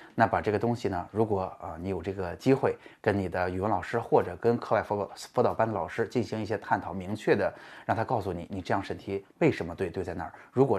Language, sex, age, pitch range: Chinese, male, 20-39, 95-115 Hz